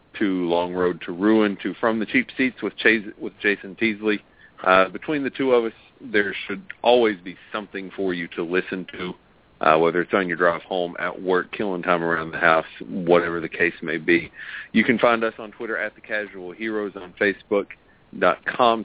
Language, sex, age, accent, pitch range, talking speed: English, male, 40-59, American, 90-120 Hz, 195 wpm